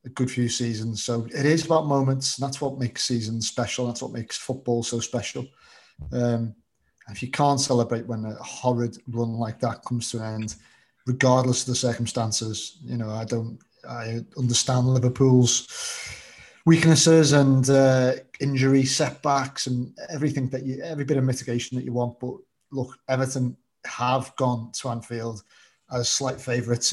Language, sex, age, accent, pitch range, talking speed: English, male, 30-49, British, 115-130 Hz, 160 wpm